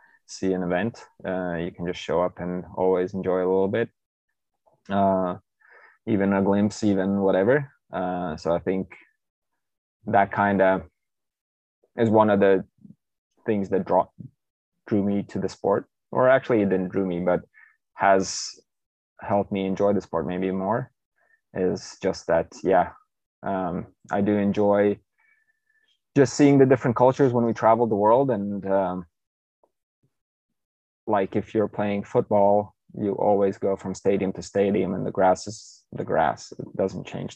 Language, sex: English, male